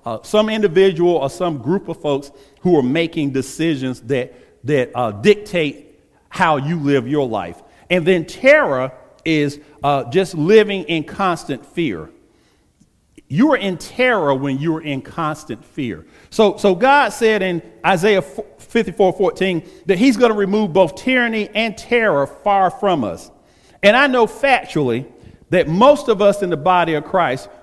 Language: English